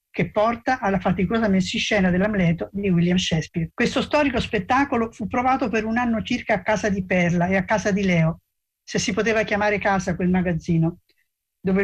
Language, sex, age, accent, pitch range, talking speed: Italian, female, 50-69, native, 190-230 Hz, 175 wpm